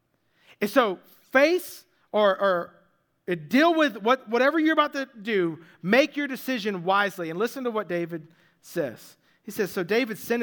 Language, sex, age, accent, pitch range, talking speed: English, male, 40-59, American, 175-245 Hz, 155 wpm